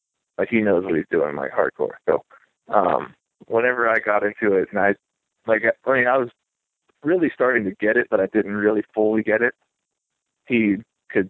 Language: English